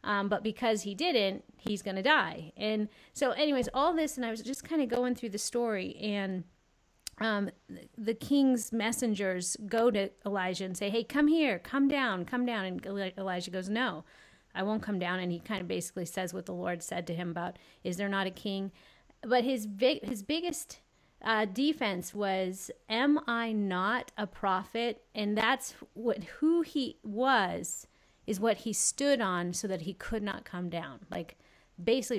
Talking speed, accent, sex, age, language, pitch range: 185 wpm, American, female, 30-49, English, 185-235 Hz